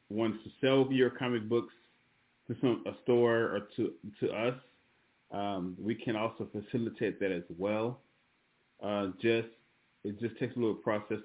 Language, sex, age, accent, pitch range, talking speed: English, male, 30-49, American, 95-110 Hz, 160 wpm